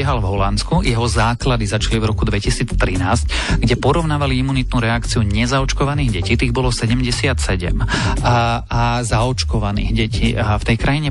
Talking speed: 135 wpm